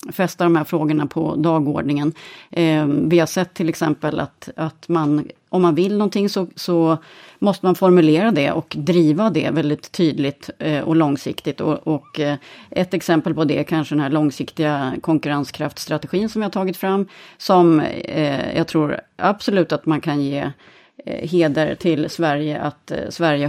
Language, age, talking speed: Swedish, 30-49, 150 wpm